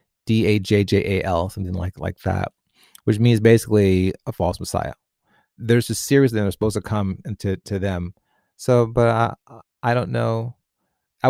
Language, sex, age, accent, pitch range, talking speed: English, male, 30-49, American, 95-115 Hz, 155 wpm